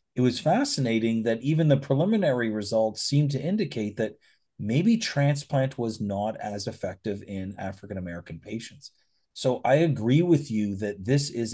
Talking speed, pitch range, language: 150 wpm, 105-145 Hz, English